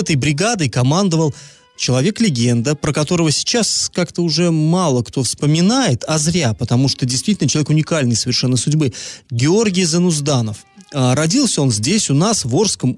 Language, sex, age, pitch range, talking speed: Russian, male, 30-49, 125-165 Hz, 140 wpm